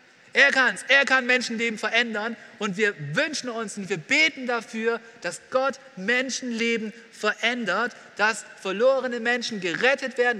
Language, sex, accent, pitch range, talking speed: German, male, German, 205-255 Hz, 140 wpm